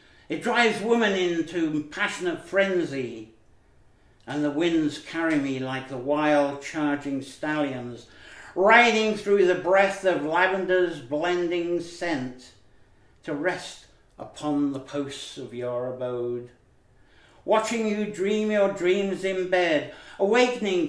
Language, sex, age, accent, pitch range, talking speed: English, male, 60-79, British, 125-190 Hz, 115 wpm